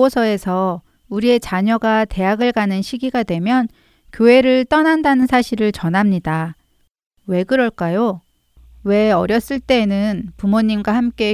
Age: 40-59